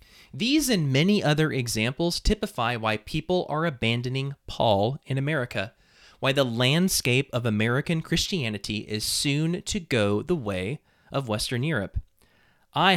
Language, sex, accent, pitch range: English, male, American, 120-170 Hz